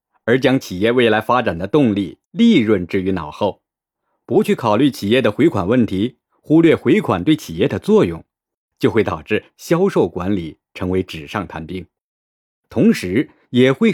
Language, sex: Chinese, male